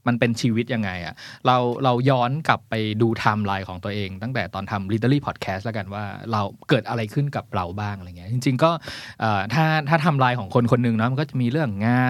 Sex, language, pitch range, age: male, Thai, 105-135 Hz, 20-39